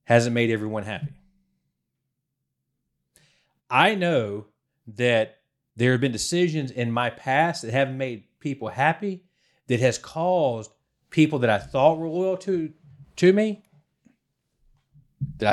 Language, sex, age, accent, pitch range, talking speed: English, male, 30-49, American, 105-145 Hz, 125 wpm